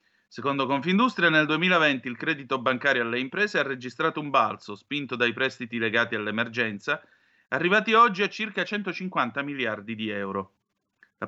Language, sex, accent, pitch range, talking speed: Italian, male, native, 115-150 Hz, 145 wpm